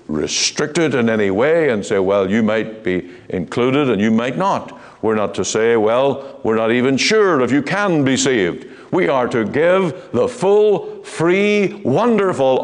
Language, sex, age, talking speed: English, male, 60-79, 180 wpm